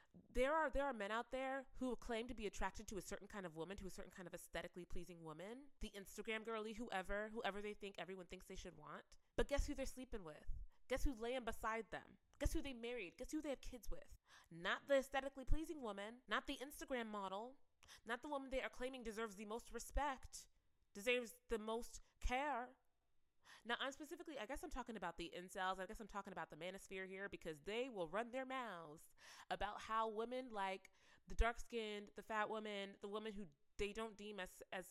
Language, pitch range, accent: English, 190-255 Hz, American